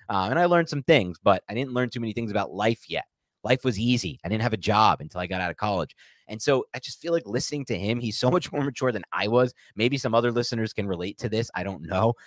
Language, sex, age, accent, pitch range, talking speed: English, male, 30-49, American, 95-125 Hz, 285 wpm